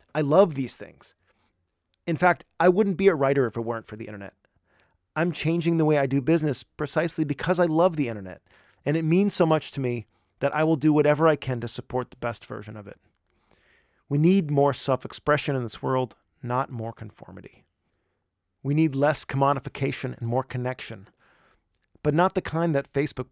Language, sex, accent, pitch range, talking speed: English, male, American, 110-145 Hz, 190 wpm